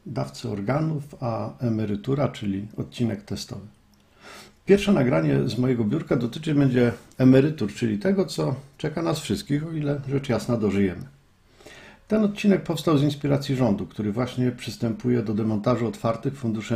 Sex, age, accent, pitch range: male, 50-69, native, 110-150 Hz